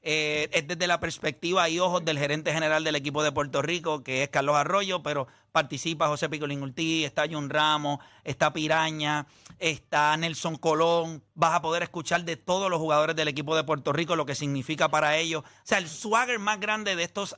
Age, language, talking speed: 30-49, Spanish, 200 wpm